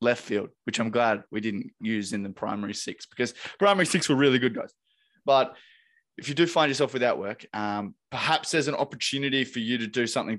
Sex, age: male, 20-39